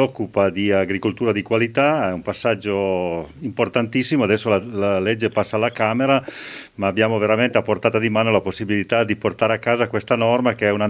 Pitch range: 105-130 Hz